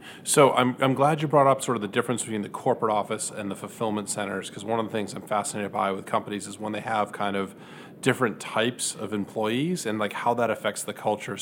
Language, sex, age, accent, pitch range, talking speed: English, male, 30-49, American, 105-130 Hz, 240 wpm